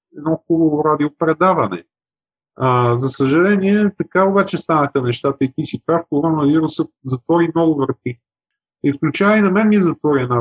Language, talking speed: Bulgarian, 150 wpm